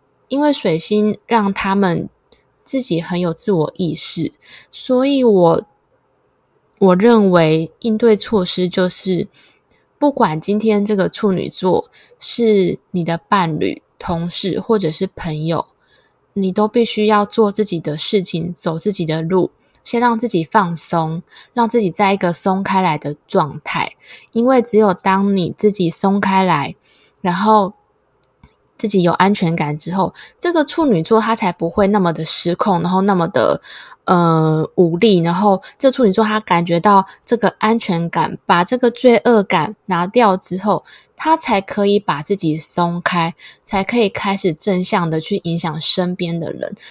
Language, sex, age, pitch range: Chinese, female, 20-39, 170-215 Hz